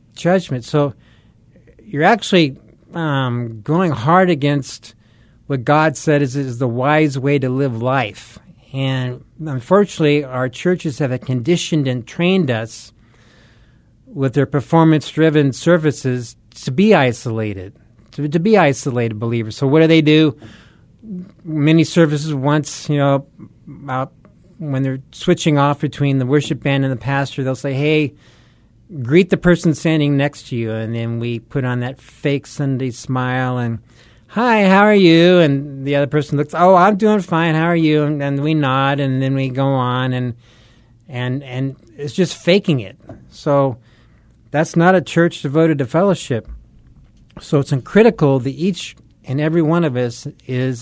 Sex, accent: male, American